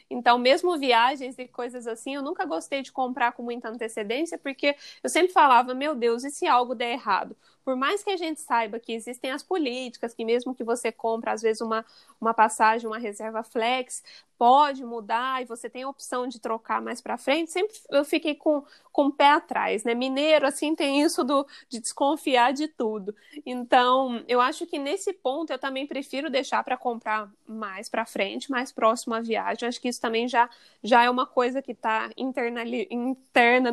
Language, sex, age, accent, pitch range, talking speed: Portuguese, female, 20-39, Brazilian, 235-285 Hz, 195 wpm